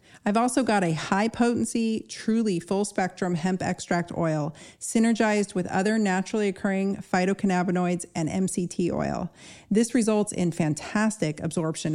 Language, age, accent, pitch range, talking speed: English, 40-59, American, 175-220 Hz, 120 wpm